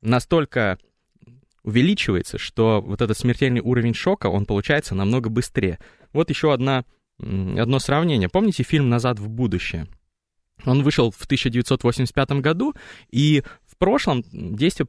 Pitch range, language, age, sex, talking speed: 105-145 Hz, Russian, 20-39, male, 125 wpm